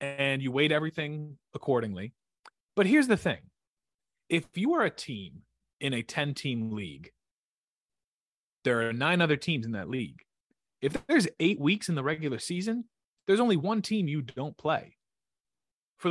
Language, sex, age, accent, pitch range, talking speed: English, male, 30-49, American, 125-190 Hz, 155 wpm